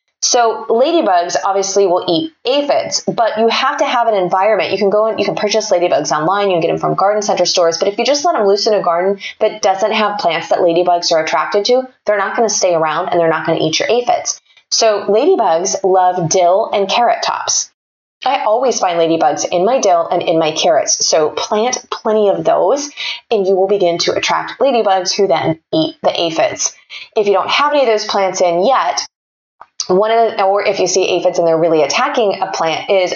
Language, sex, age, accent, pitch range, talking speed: English, female, 20-39, American, 175-220 Hz, 220 wpm